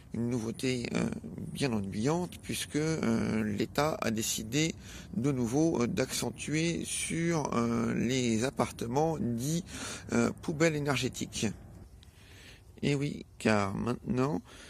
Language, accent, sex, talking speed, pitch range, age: French, French, male, 100 wpm, 110-145 Hz, 50-69